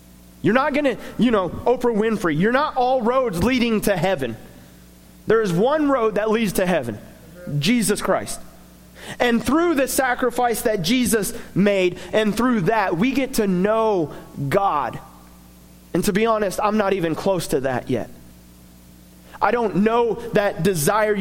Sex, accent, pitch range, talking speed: male, American, 160-240 Hz, 160 wpm